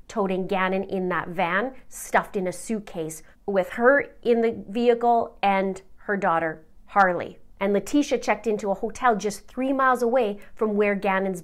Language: English